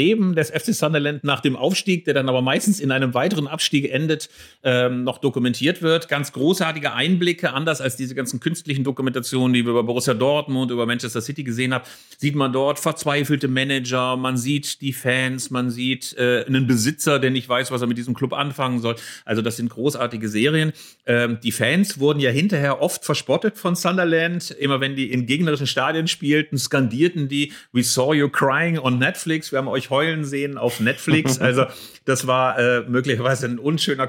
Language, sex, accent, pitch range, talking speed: German, male, German, 125-155 Hz, 185 wpm